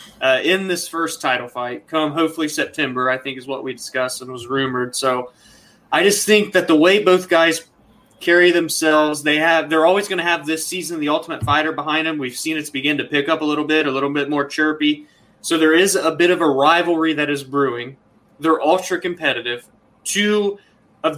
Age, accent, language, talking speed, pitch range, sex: 20-39, American, English, 210 wpm, 145-175 Hz, male